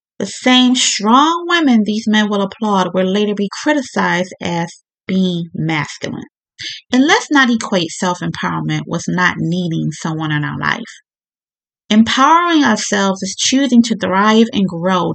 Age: 30-49